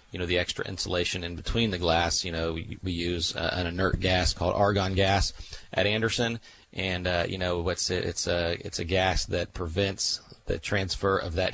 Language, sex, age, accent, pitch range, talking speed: English, male, 30-49, American, 90-105 Hz, 210 wpm